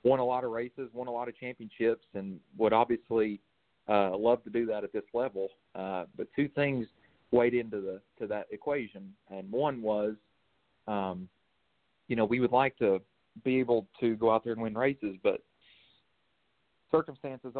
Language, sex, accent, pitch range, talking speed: English, male, American, 110-130 Hz, 175 wpm